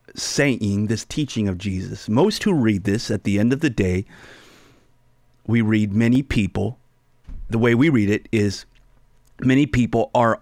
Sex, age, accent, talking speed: male, 30-49, American, 160 wpm